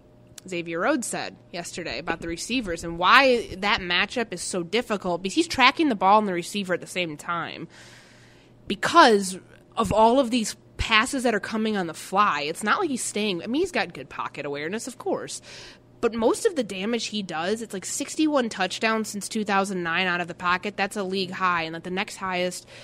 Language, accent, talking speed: English, American, 205 wpm